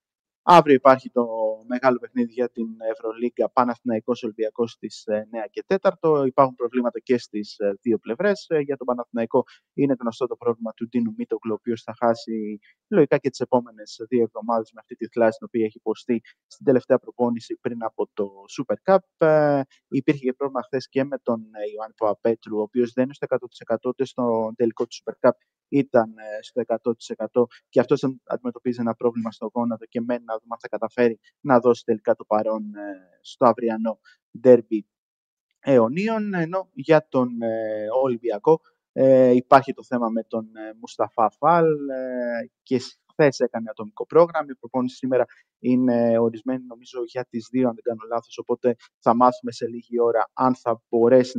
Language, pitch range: Greek, 115-130 Hz